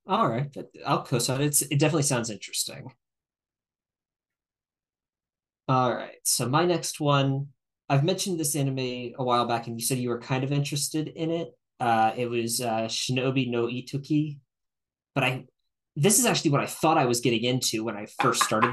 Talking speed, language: 180 wpm, English